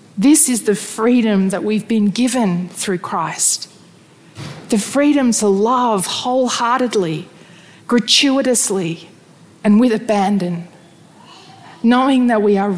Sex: female